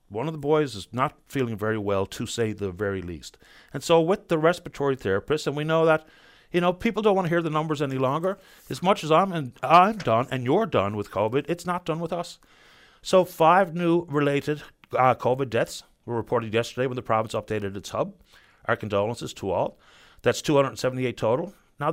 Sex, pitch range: male, 110-175 Hz